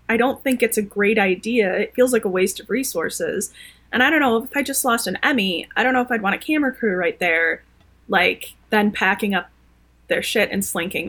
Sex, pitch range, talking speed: female, 205-250 Hz, 235 wpm